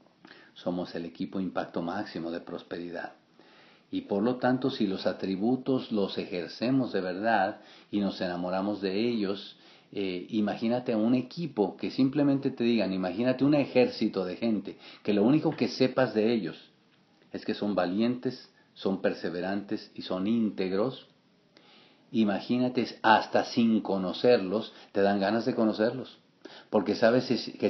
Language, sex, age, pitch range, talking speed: English, male, 50-69, 95-115 Hz, 140 wpm